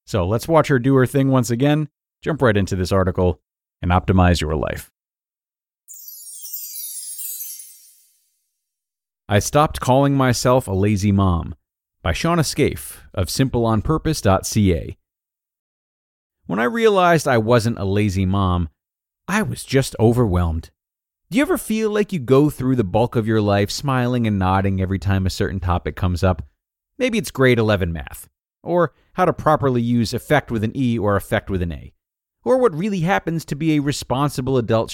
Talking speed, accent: 160 wpm, American